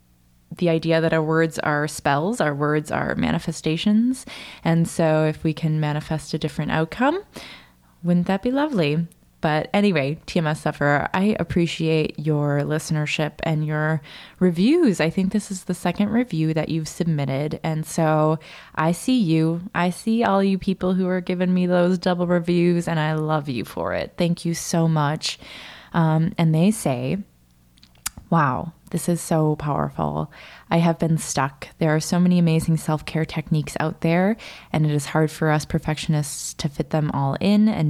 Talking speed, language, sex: 170 wpm, English, female